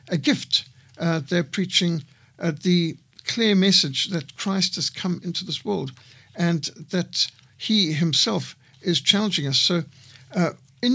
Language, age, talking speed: English, 60-79, 140 wpm